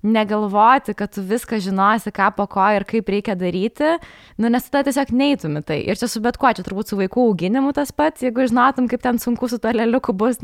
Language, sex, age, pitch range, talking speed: English, female, 20-39, 200-240 Hz, 215 wpm